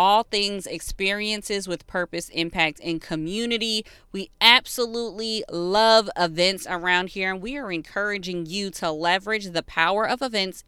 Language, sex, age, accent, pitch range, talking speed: English, female, 20-39, American, 170-215 Hz, 140 wpm